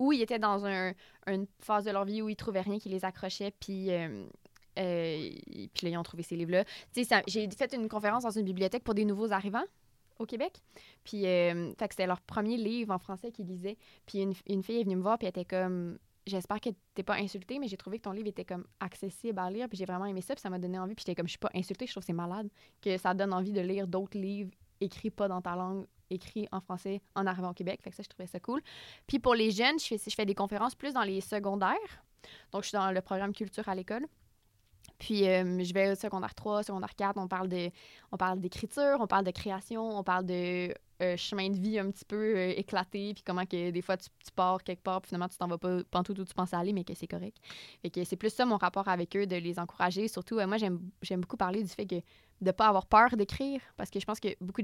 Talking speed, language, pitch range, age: 260 wpm, French, 185-210 Hz, 20-39